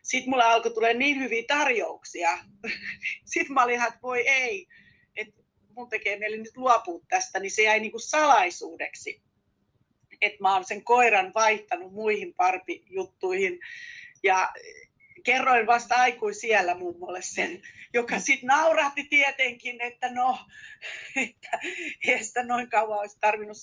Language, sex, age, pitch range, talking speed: Finnish, female, 40-59, 210-350 Hz, 110 wpm